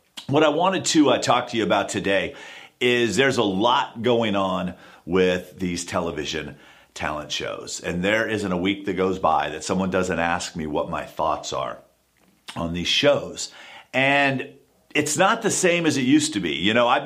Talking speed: 190 wpm